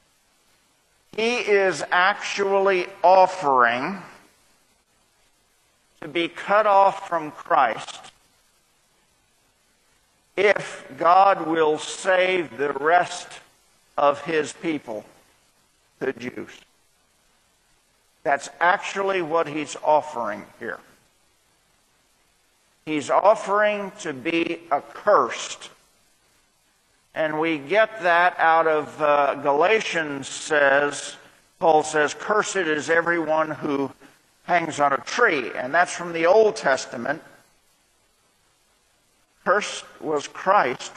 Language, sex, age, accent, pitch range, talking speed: English, male, 50-69, American, 145-180 Hz, 90 wpm